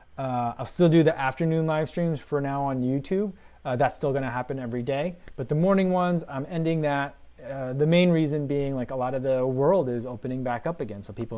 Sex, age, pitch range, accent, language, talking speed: male, 20-39, 120-165 Hz, American, English, 235 wpm